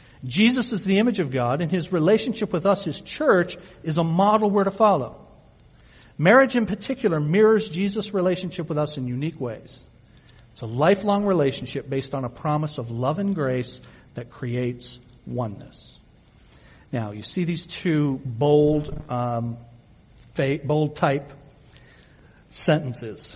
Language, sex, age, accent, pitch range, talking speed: English, male, 60-79, American, 130-180 Hz, 140 wpm